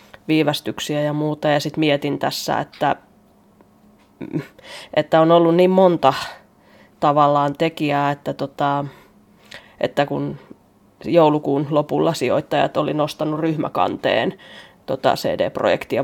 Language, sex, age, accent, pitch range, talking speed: Finnish, female, 20-39, native, 145-160 Hz, 95 wpm